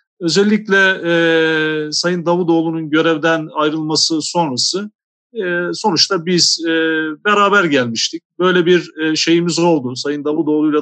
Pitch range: 150-180 Hz